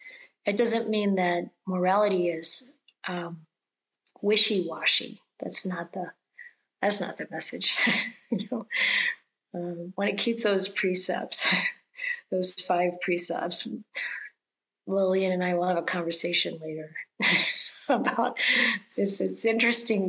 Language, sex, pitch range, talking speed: English, female, 180-210 Hz, 105 wpm